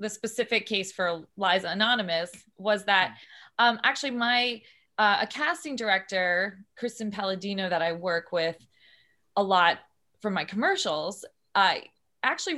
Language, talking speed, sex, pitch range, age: English, 135 wpm, female, 180-220 Hz, 20-39